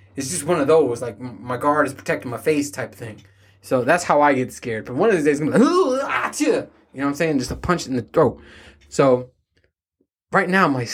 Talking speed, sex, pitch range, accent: 240 wpm, male, 125-180 Hz, American